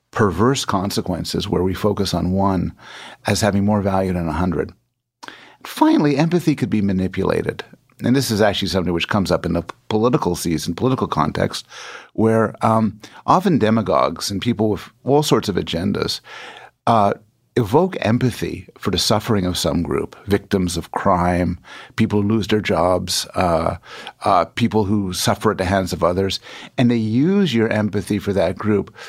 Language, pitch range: English, 95-120 Hz